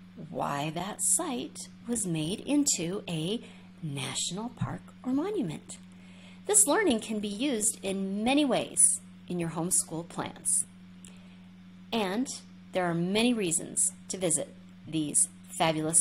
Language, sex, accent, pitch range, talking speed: English, female, American, 145-220 Hz, 120 wpm